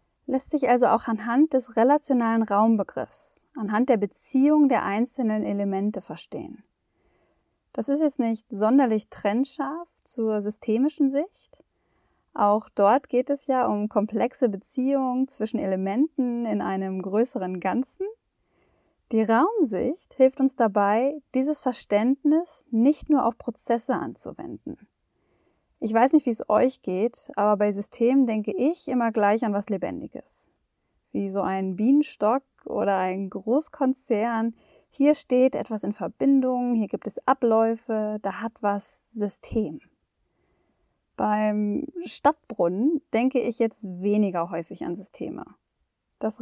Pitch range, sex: 205-265 Hz, female